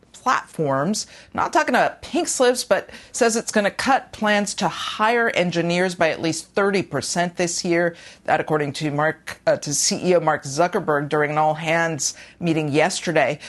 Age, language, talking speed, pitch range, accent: 50-69, English, 170 wpm, 155-215 Hz, American